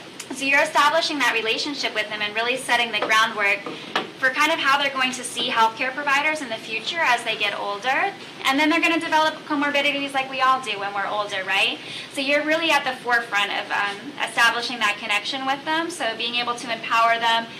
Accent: American